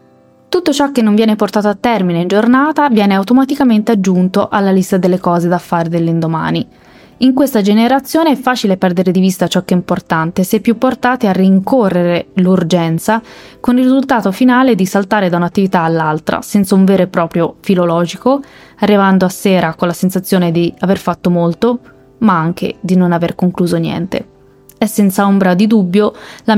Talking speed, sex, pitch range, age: 170 wpm, female, 175-225 Hz, 20-39